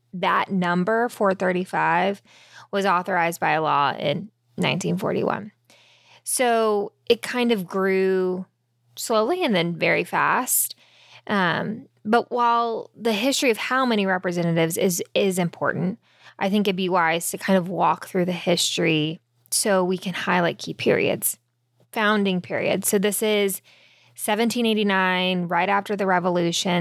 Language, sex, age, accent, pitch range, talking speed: English, female, 10-29, American, 175-210 Hz, 130 wpm